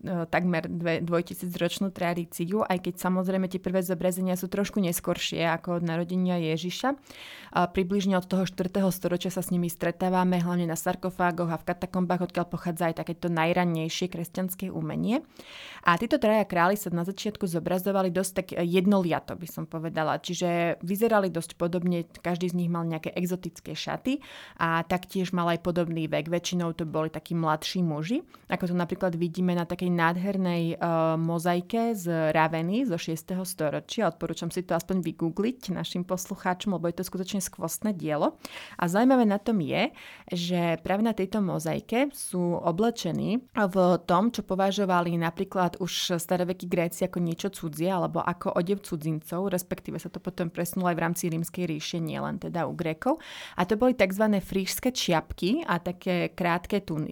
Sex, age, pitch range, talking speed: female, 20-39, 170-190 Hz, 160 wpm